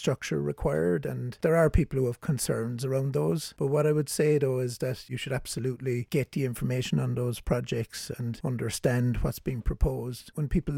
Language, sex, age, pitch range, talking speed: English, male, 60-79, 115-140 Hz, 195 wpm